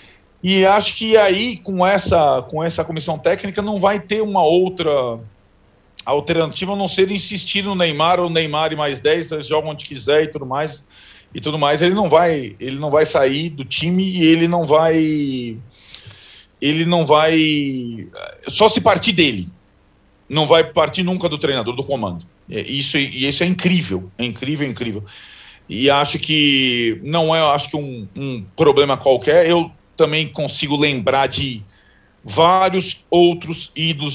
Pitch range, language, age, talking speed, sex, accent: 135-175 Hz, Portuguese, 40-59, 155 wpm, male, Brazilian